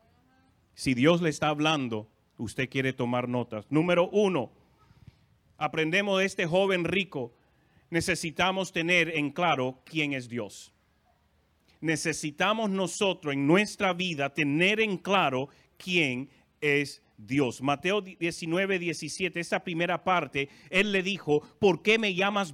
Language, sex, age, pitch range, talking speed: Spanish, male, 40-59, 145-205 Hz, 130 wpm